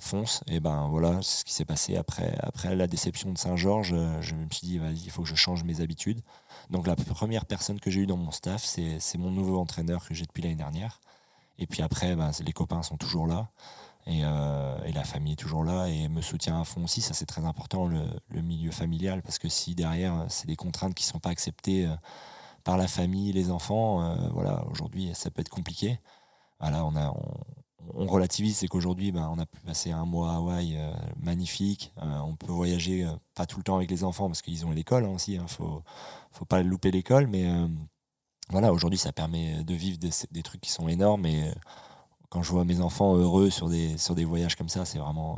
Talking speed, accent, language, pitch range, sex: 235 wpm, French, French, 80-95 Hz, male